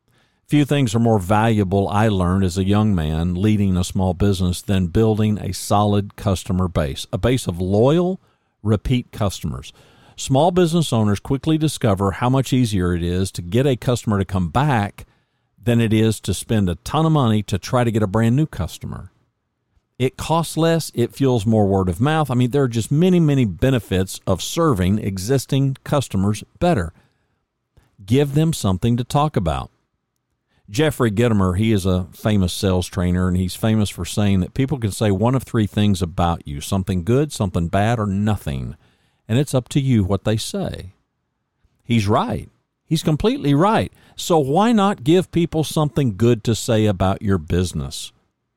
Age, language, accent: 50-69, English, American